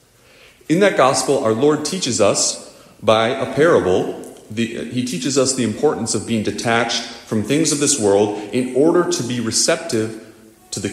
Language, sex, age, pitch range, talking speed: English, male, 40-59, 105-140 Hz, 165 wpm